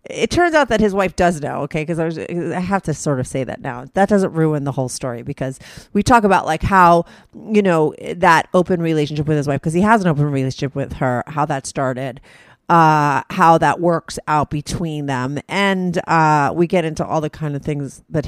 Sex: female